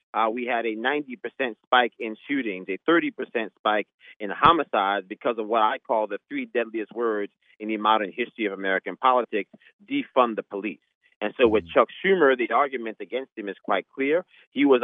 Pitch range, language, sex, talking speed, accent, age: 110-150 Hz, English, male, 195 wpm, American, 30-49